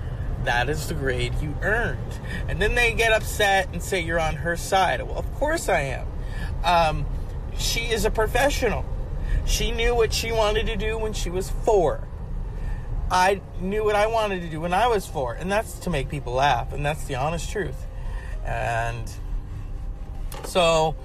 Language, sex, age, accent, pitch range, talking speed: English, male, 40-59, American, 120-190 Hz, 175 wpm